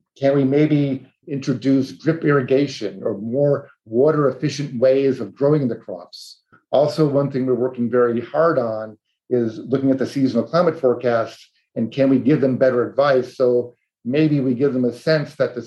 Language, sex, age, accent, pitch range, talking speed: English, male, 50-69, American, 120-140 Hz, 170 wpm